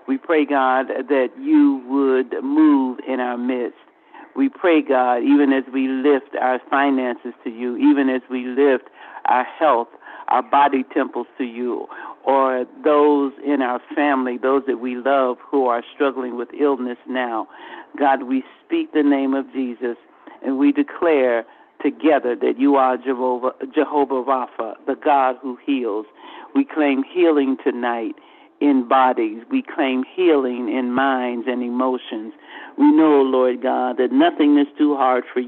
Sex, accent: male, American